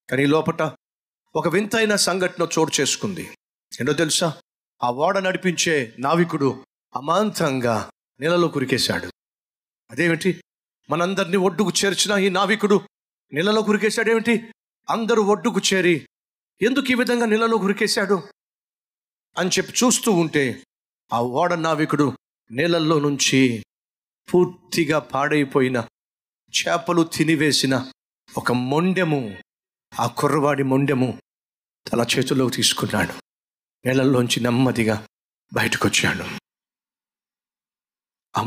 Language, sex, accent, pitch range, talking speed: Telugu, male, native, 140-195 Hz, 85 wpm